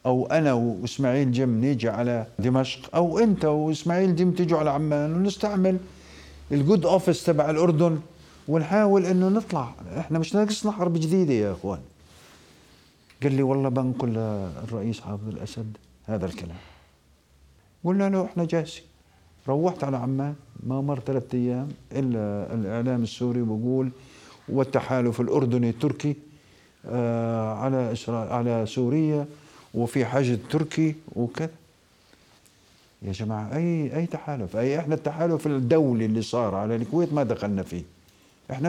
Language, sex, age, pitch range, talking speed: Arabic, male, 50-69, 115-160 Hz, 125 wpm